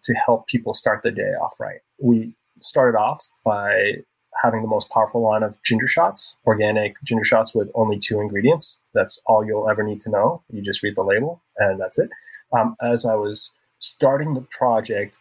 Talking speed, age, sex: 195 wpm, 30-49, male